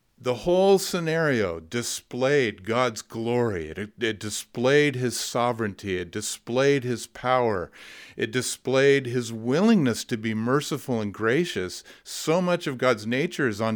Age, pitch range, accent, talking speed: 50-69, 105-130 Hz, American, 135 wpm